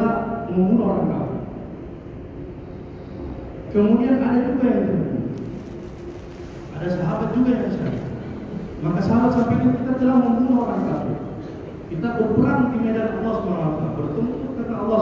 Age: 40-59